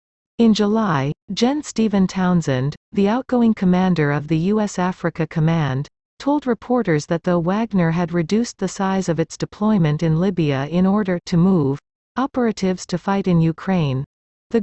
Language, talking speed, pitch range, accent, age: English, 150 wpm, 160-205 Hz, American, 40-59